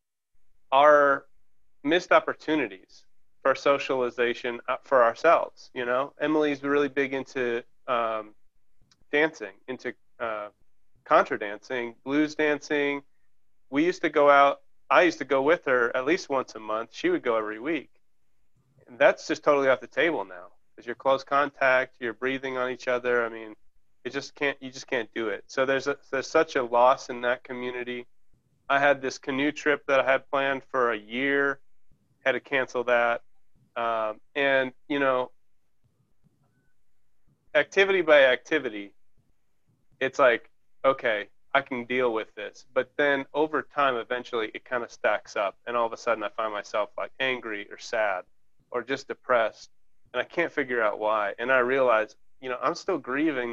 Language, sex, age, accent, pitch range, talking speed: English, male, 30-49, American, 120-140 Hz, 165 wpm